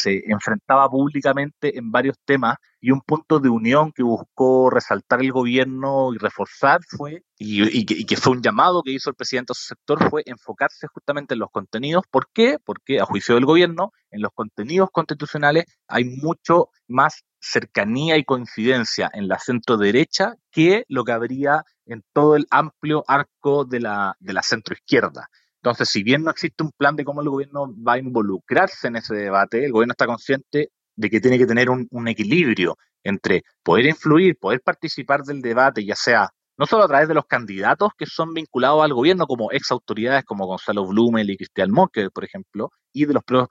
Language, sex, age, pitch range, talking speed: Spanish, male, 30-49, 120-150 Hz, 190 wpm